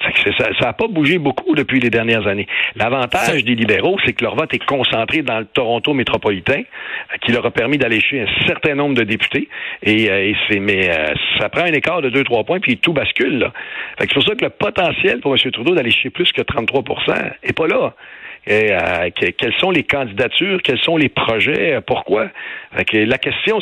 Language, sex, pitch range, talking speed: French, male, 110-145 Hz, 205 wpm